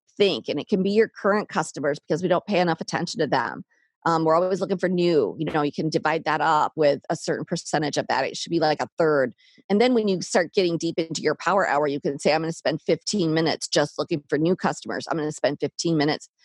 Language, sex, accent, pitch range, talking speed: English, female, American, 155-190 Hz, 265 wpm